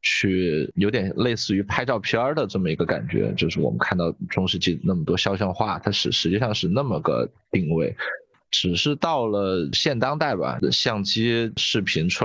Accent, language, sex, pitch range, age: native, Chinese, male, 90-110 Hz, 20-39